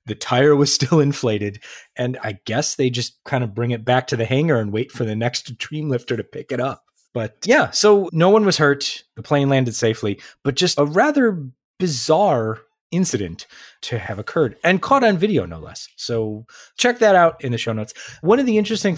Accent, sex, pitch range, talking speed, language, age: American, male, 110-145 Hz, 210 wpm, English, 30-49